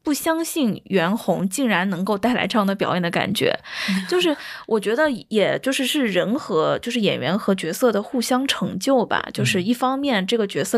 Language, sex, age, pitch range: Chinese, female, 20-39, 190-245 Hz